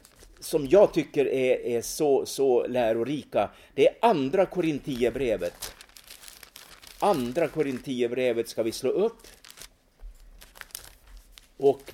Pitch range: 115-195 Hz